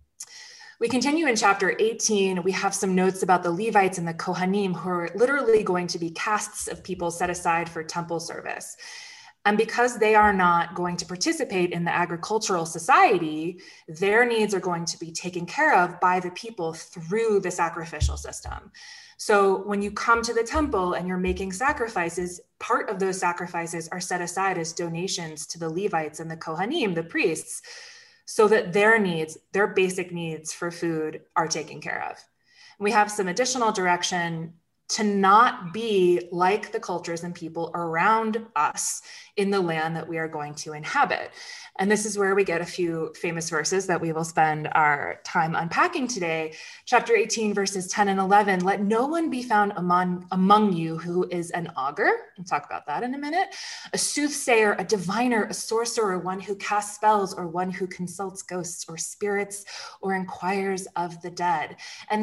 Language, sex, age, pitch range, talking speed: English, female, 20-39, 175-225 Hz, 180 wpm